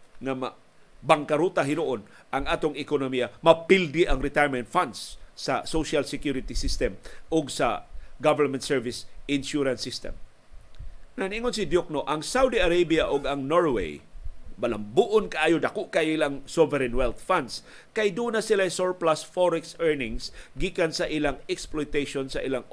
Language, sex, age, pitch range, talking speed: Filipino, male, 50-69, 130-175 Hz, 130 wpm